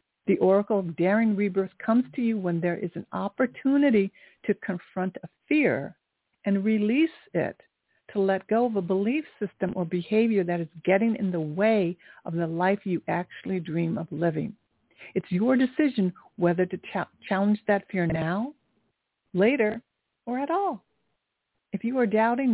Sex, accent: female, American